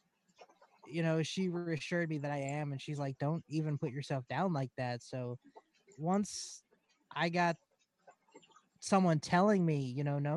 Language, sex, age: English, male, 20-39